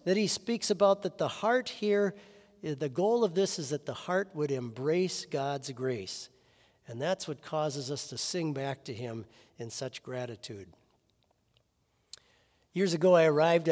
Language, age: English, 50-69